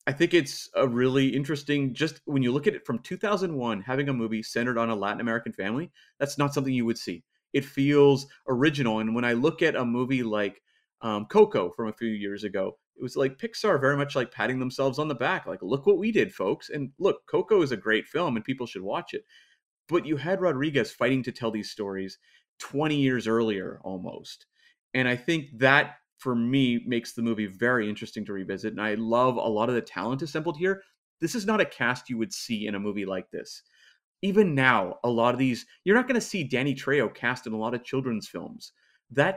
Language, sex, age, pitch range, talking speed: English, male, 30-49, 115-155 Hz, 225 wpm